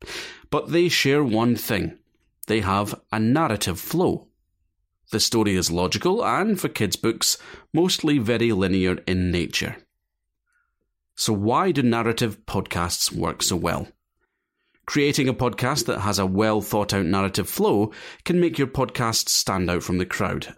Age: 30-49